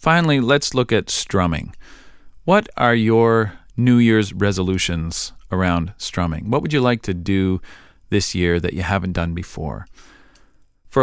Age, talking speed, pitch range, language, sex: 40-59, 145 wpm, 90-115 Hz, English, male